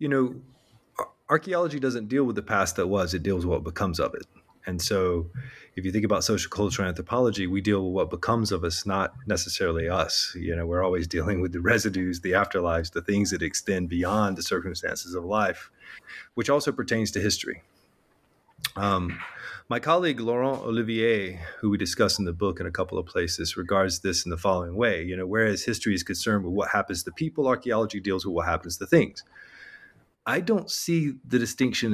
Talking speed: 195 wpm